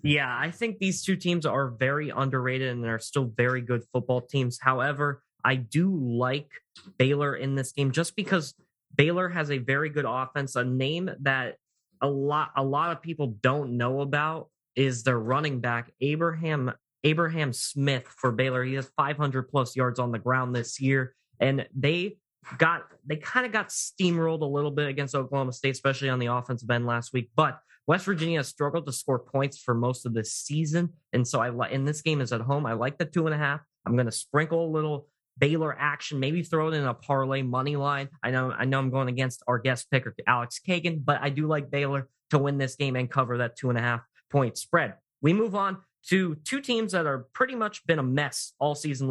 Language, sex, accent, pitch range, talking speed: English, male, American, 130-155 Hz, 210 wpm